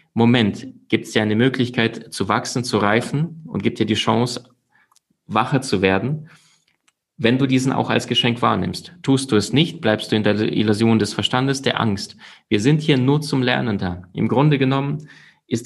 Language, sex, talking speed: German, male, 190 wpm